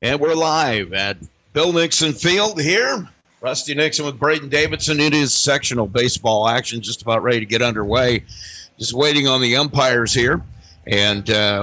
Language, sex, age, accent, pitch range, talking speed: English, male, 50-69, American, 115-160 Hz, 165 wpm